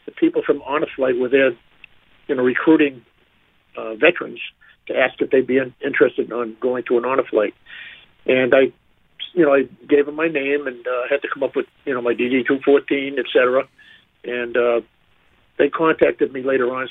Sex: male